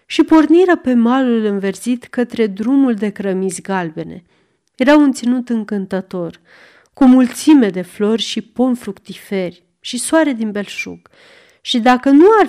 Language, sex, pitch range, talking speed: Romanian, female, 195-275 Hz, 140 wpm